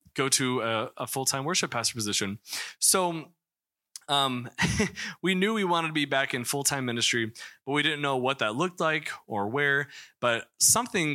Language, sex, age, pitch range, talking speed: English, male, 20-39, 120-165 Hz, 185 wpm